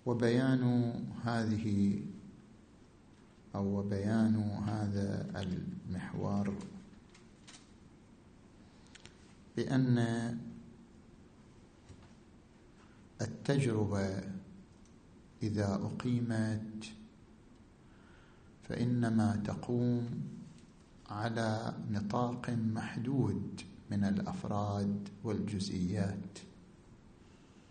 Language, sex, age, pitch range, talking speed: Arabic, male, 50-69, 100-120 Hz, 40 wpm